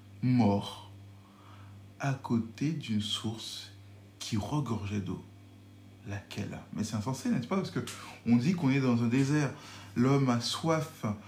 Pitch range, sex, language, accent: 100-130 Hz, male, French, French